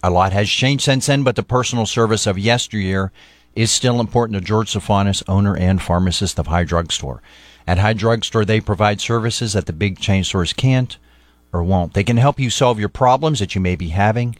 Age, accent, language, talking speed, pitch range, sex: 40-59, American, English, 210 wpm, 95-120 Hz, male